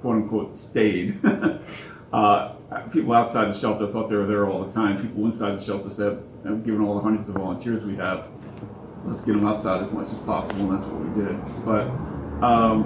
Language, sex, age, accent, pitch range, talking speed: English, male, 30-49, American, 105-115 Hz, 205 wpm